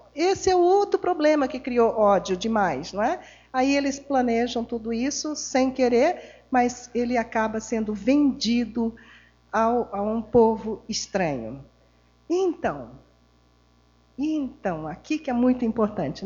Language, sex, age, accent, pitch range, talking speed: Portuguese, female, 50-69, Brazilian, 210-285 Hz, 130 wpm